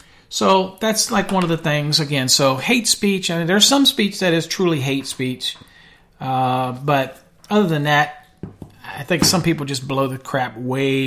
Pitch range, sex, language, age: 140-190 Hz, male, English, 40-59